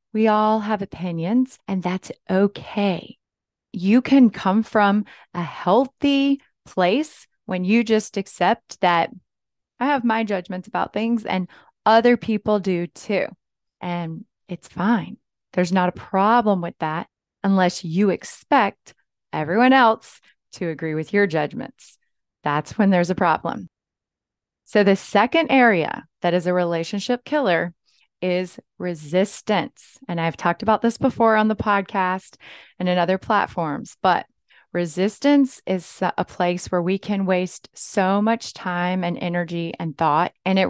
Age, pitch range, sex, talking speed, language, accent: 20-39, 175-215 Hz, female, 140 wpm, English, American